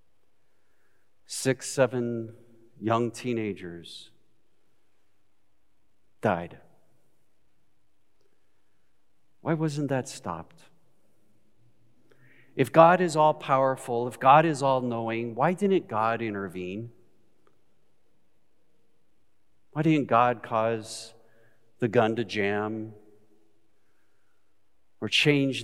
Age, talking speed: 50-69, 75 wpm